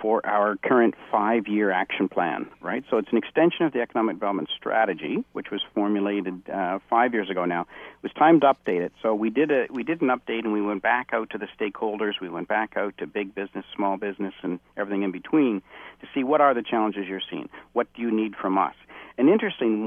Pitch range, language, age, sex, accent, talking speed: 100-135 Hz, English, 50-69, male, American, 220 wpm